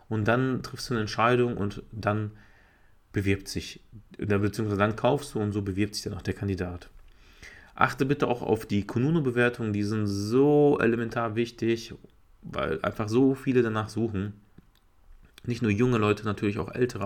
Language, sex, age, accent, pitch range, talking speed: German, male, 30-49, German, 100-125 Hz, 160 wpm